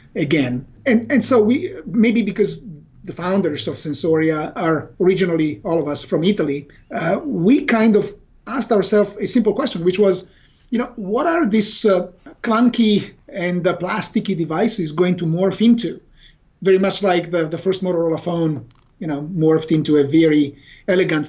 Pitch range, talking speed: 160-205 Hz, 165 wpm